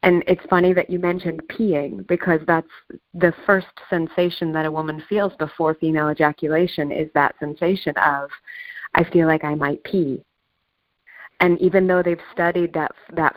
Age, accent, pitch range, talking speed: 30-49, American, 155-190 Hz, 160 wpm